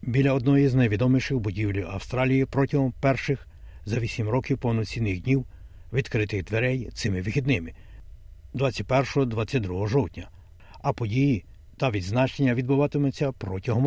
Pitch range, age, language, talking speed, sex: 100-130 Hz, 60-79, Ukrainian, 110 wpm, male